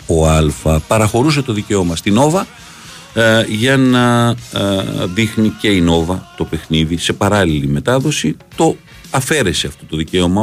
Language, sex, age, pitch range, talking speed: Greek, male, 50-69, 80-110 Hz, 145 wpm